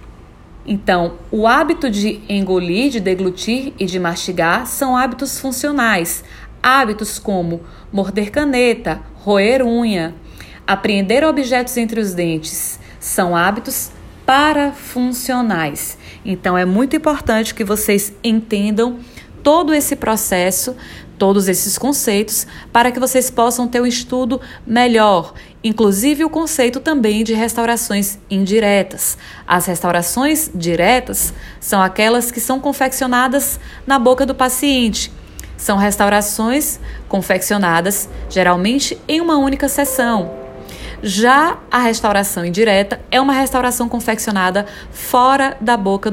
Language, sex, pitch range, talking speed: Portuguese, female, 185-250 Hz, 110 wpm